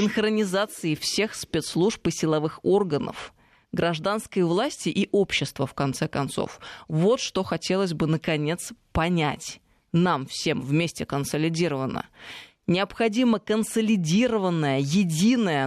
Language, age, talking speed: Russian, 20-39, 100 wpm